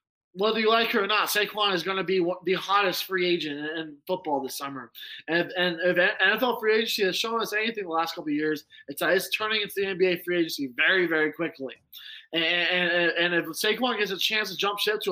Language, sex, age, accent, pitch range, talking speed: English, male, 20-39, American, 185-265 Hz, 225 wpm